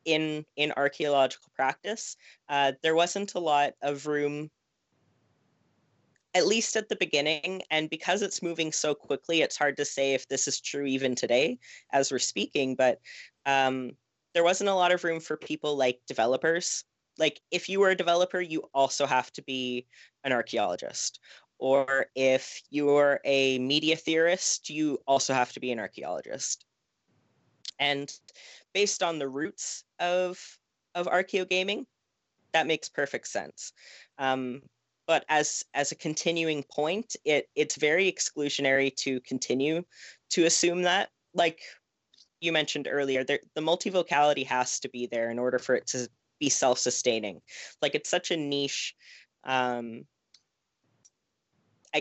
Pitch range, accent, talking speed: 135-165 Hz, American, 145 wpm